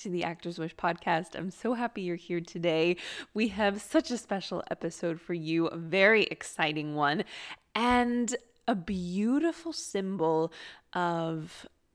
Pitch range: 170-230 Hz